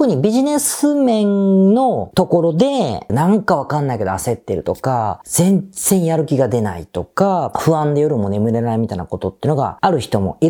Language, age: Japanese, 40-59